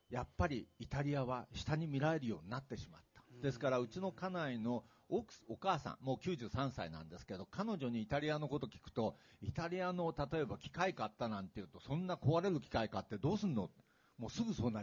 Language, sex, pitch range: Japanese, male, 120-170 Hz